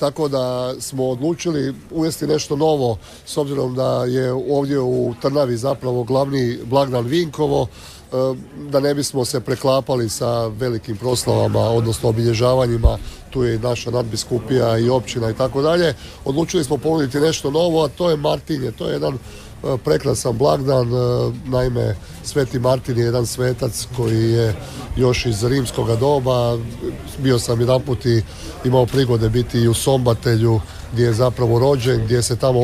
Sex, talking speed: male, 150 wpm